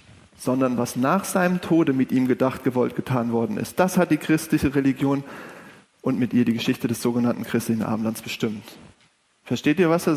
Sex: male